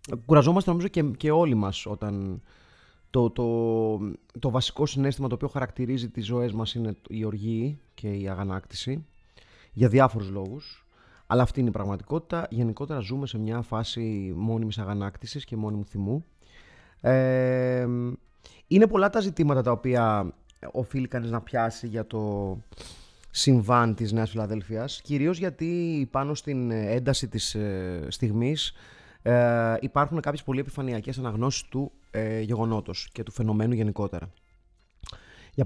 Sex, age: male, 30-49